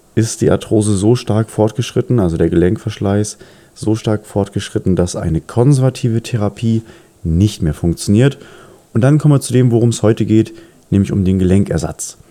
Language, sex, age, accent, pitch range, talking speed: German, male, 30-49, German, 90-115 Hz, 160 wpm